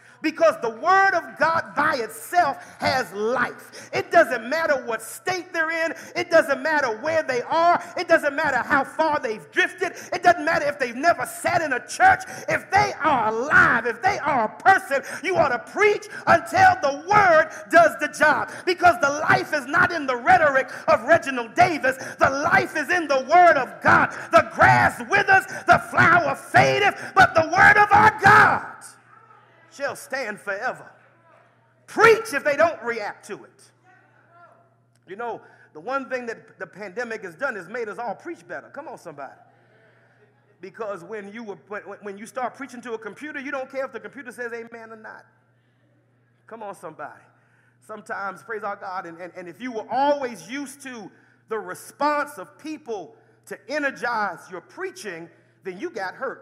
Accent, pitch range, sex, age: American, 240-345 Hz, male, 40-59